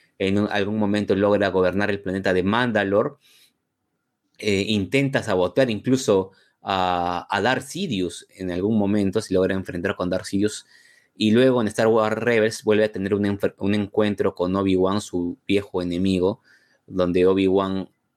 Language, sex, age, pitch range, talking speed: Spanish, male, 20-39, 95-110 Hz, 150 wpm